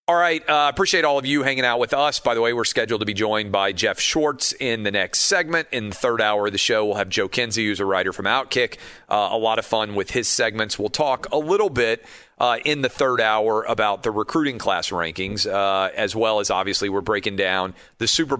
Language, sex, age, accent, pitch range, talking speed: English, male, 40-59, American, 105-140 Hz, 250 wpm